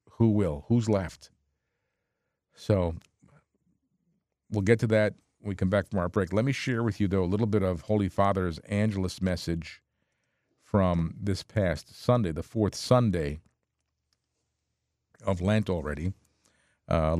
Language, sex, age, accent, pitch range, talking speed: English, male, 50-69, American, 90-110 Hz, 145 wpm